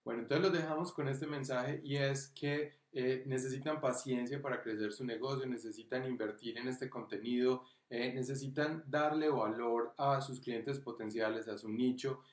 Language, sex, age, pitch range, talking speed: Spanish, male, 30-49, 115-135 Hz, 160 wpm